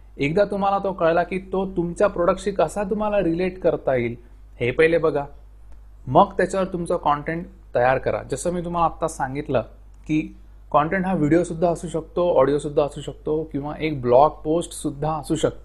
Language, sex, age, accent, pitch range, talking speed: Marathi, male, 30-49, native, 130-180 Hz, 110 wpm